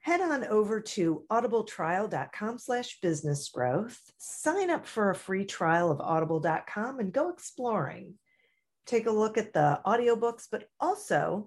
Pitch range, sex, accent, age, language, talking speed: 155-225 Hz, female, American, 40-59, English, 135 wpm